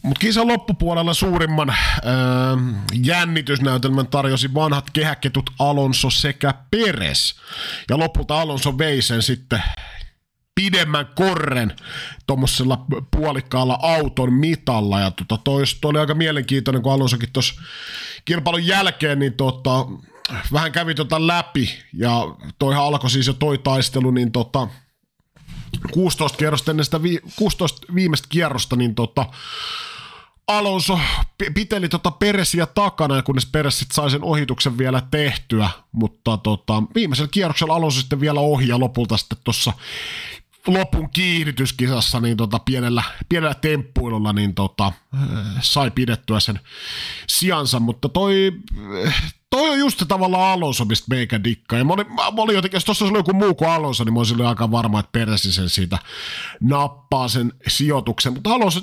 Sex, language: male, Finnish